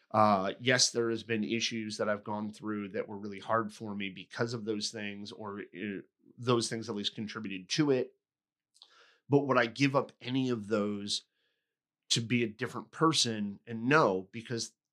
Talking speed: 180 wpm